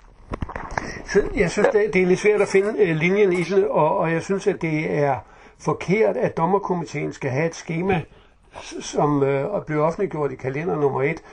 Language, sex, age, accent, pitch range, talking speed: Danish, male, 60-79, native, 145-185 Hz, 165 wpm